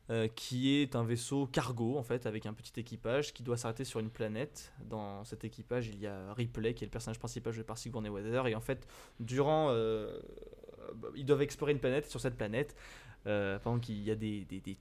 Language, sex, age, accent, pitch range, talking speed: French, male, 20-39, French, 110-145 Hz, 225 wpm